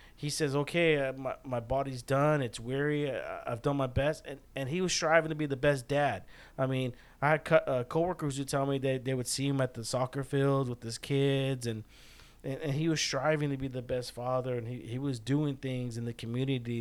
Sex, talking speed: male, 240 wpm